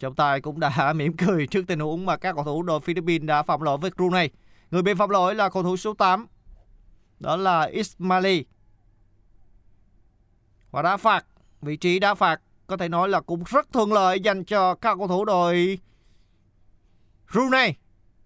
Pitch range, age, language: 150-225 Hz, 20-39, Vietnamese